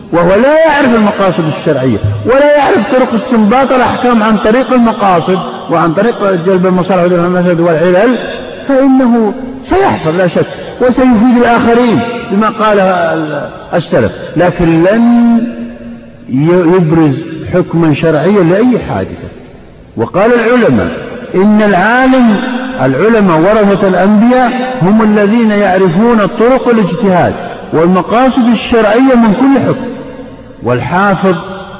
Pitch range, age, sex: 170-235 Hz, 50-69, male